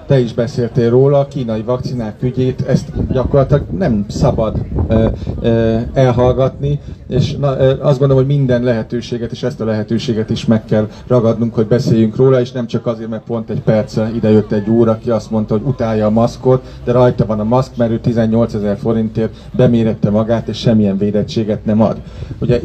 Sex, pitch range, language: male, 115-140 Hz, Hungarian